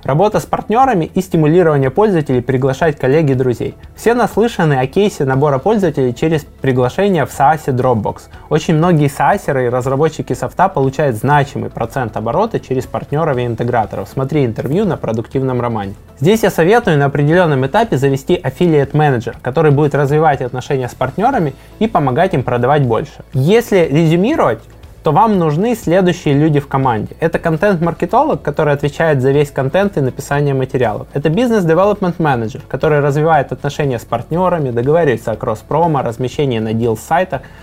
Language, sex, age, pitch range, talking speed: Russian, male, 20-39, 125-165 Hz, 150 wpm